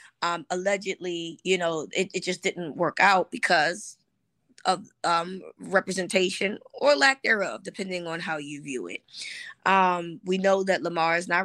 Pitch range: 170-200 Hz